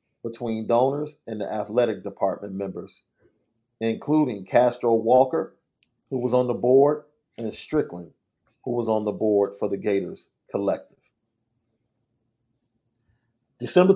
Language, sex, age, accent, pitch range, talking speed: English, male, 40-59, American, 115-135 Hz, 115 wpm